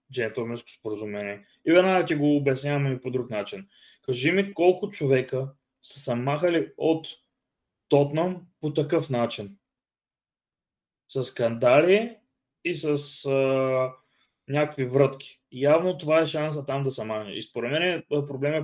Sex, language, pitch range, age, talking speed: male, Bulgarian, 130-175 Hz, 20-39, 130 wpm